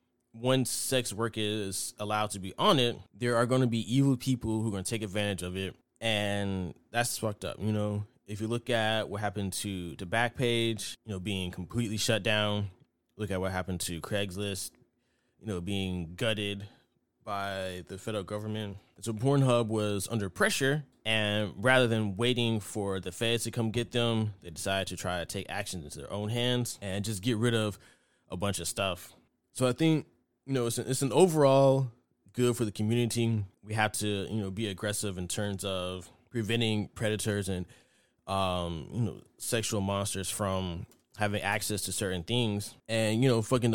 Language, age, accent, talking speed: English, 20-39, American, 190 wpm